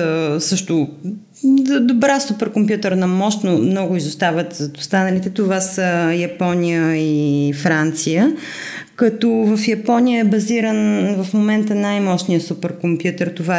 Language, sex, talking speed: Bulgarian, female, 95 wpm